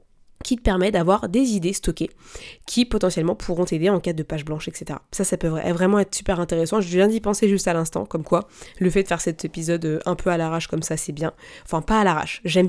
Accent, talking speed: French, 245 wpm